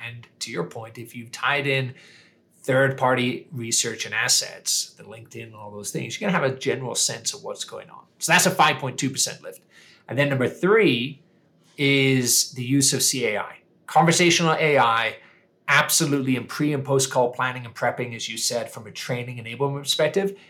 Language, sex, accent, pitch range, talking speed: English, male, American, 125-160 Hz, 175 wpm